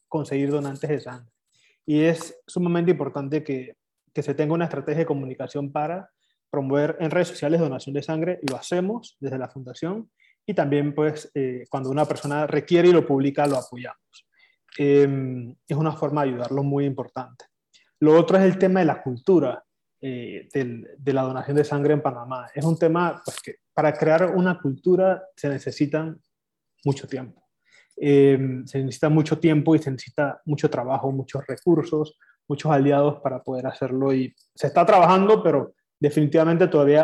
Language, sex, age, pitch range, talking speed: Spanish, male, 20-39, 135-160 Hz, 170 wpm